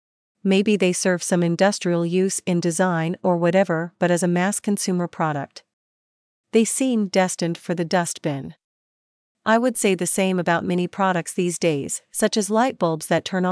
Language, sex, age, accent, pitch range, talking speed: English, female, 40-59, American, 170-205 Hz, 165 wpm